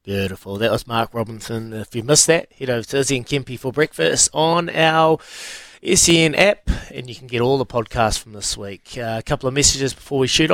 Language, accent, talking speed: English, Australian, 220 wpm